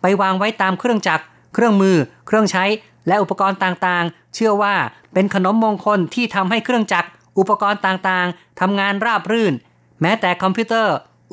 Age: 30-49